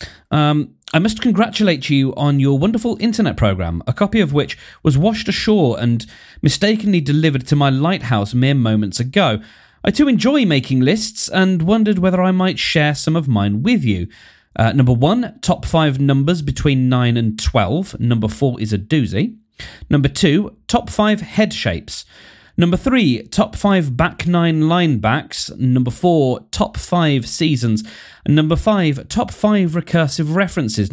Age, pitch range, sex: 30-49, 110-180 Hz, male